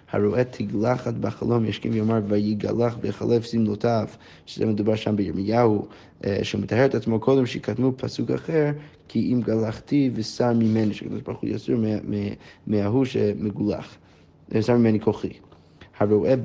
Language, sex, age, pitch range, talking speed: Hebrew, male, 20-39, 105-125 Hz, 125 wpm